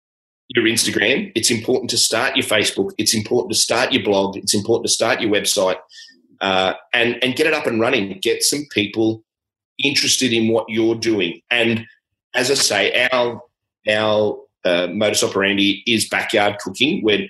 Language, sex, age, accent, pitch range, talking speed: English, male, 30-49, Australian, 105-145 Hz, 170 wpm